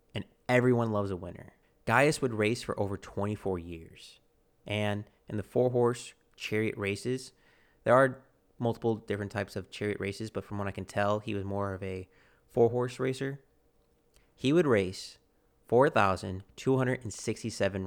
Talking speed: 140 wpm